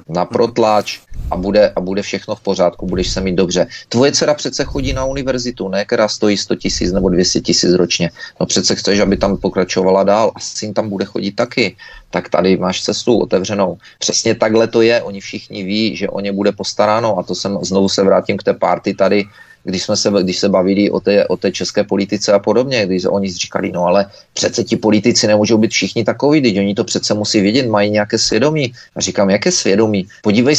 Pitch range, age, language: 95-115 Hz, 30-49, Czech